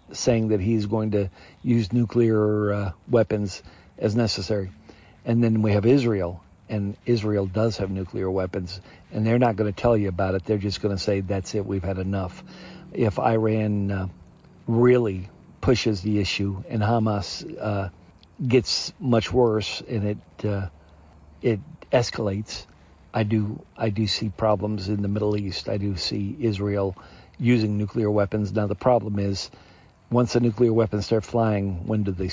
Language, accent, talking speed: English, American, 165 wpm